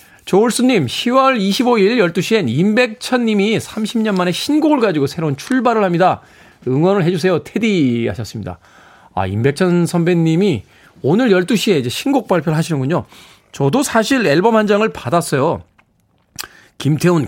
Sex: male